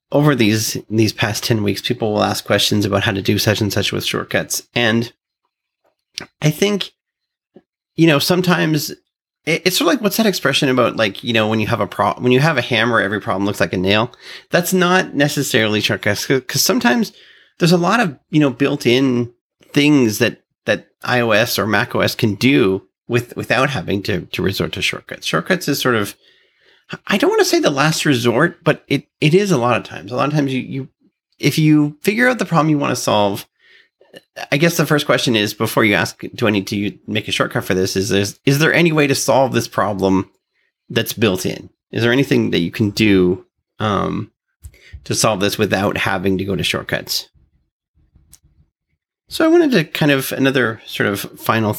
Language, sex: English, male